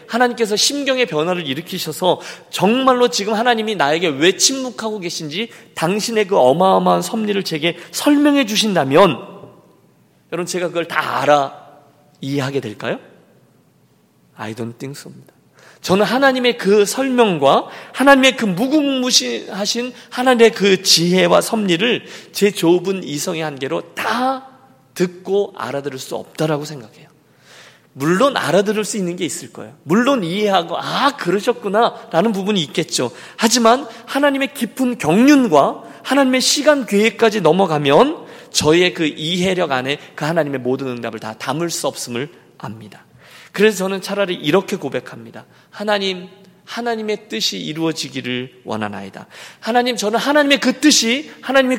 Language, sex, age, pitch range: Korean, male, 40-59, 155-235 Hz